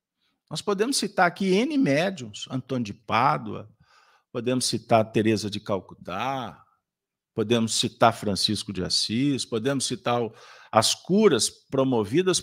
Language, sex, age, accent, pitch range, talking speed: Portuguese, male, 50-69, Brazilian, 115-165 Hz, 115 wpm